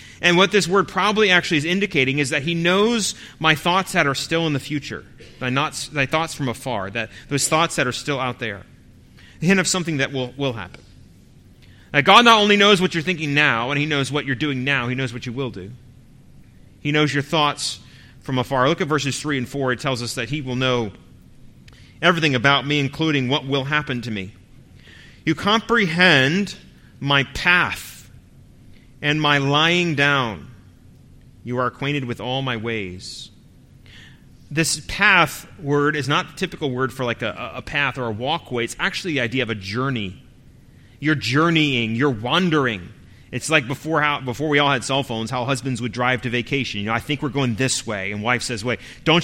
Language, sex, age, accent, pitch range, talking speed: English, male, 30-49, American, 125-170 Hz, 200 wpm